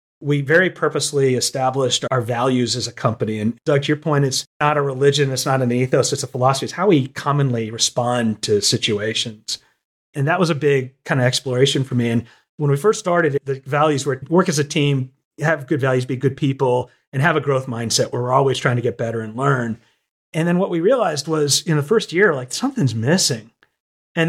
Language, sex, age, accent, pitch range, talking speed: English, male, 40-59, American, 125-150 Hz, 215 wpm